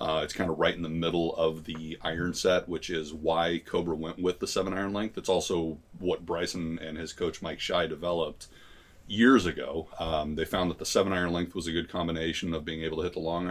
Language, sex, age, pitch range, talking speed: English, male, 30-49, 80-100 Hz, 235 wpm